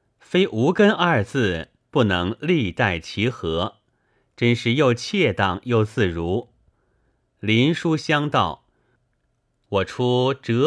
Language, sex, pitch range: Chinese, male, 100-135 Hz